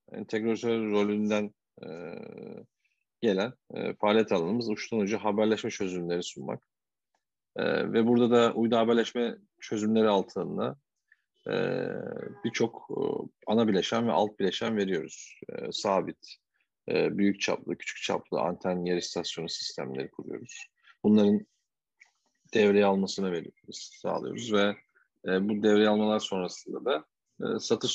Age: 40-59